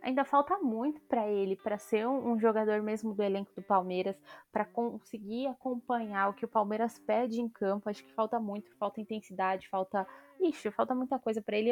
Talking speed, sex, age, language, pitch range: 195 wpm, female, 20-39, Portuguese, 200-235 Hz